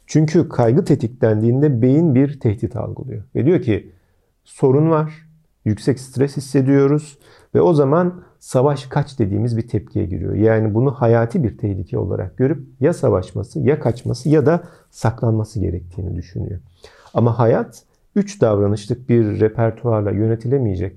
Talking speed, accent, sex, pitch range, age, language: 135 wpm, native, male, 105-145 Hz, 50-69, Turkish